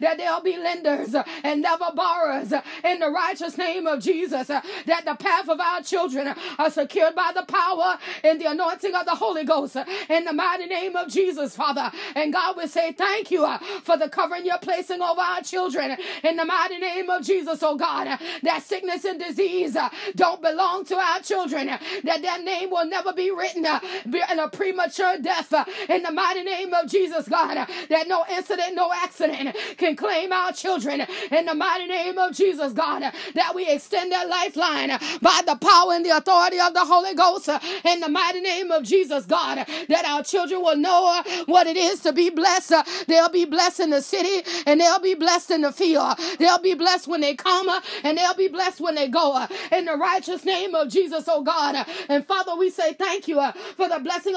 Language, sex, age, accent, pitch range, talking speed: English, female, 30-49, American, 320-365 Hz, 200 wpm